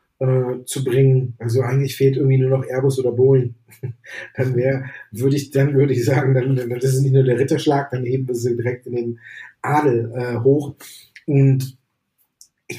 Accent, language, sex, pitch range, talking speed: German, German, male, 130-155 Hz, 180 wpm